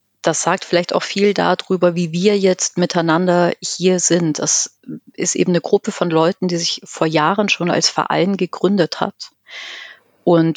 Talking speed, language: 165 wpm, German